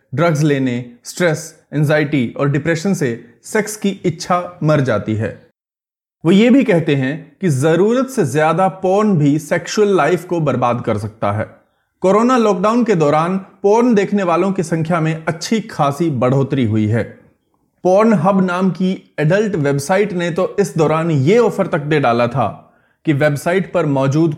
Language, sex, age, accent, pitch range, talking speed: Hindi, male, 30-49, native, 135-195 Hz, 160 wpm